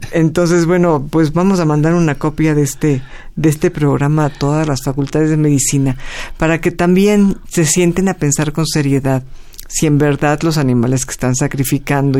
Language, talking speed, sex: Spanish, 175 wpm, female